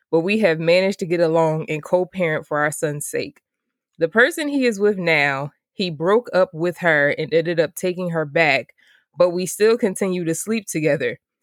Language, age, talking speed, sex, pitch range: English, 20-39, 195 wpm, female, 165-210 Hz